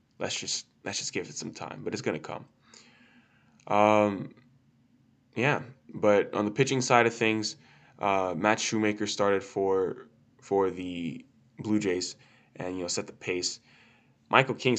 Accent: American